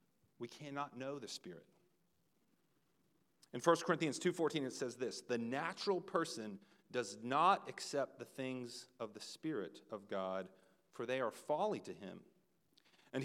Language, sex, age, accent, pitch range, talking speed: English, male, 40-59, American, 115-155 Hz, 145 wpm